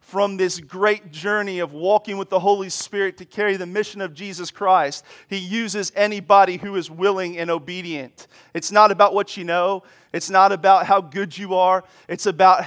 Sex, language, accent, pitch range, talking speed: male, English, American, 185-220 Hz, 190 wpm